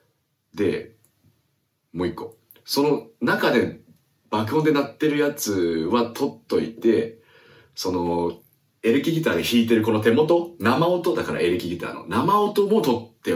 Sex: male